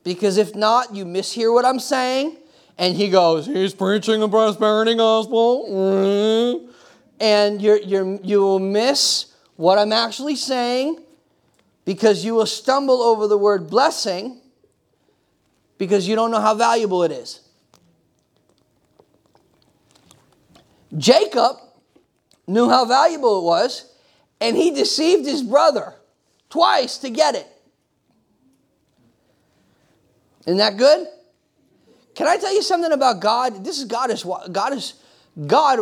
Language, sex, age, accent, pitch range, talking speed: English, male, 40-59, American, 215-280 Hz, 120 wpm